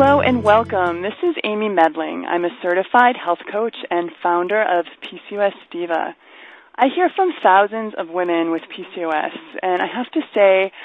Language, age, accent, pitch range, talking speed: English, 20-39, American, 170-215 Hz, 165 wpm